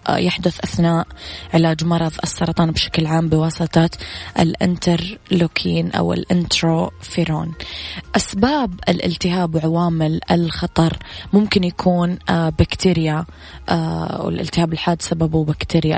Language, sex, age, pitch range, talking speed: Arabic, female, 20-39, 160-180 Hz, 85 wpm